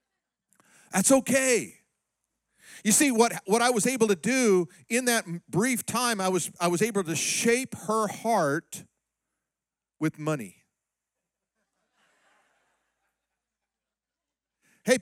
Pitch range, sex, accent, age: 170-230 Hz, male, American, 50-69